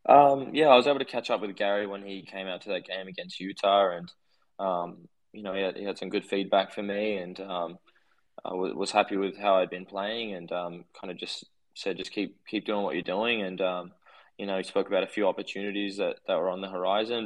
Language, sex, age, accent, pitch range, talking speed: English, male, 20-39, Australian, 95-100 Hz, 250 wpm